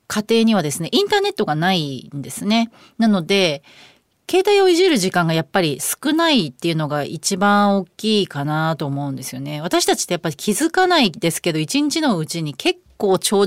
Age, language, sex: 30-49, Japanese, female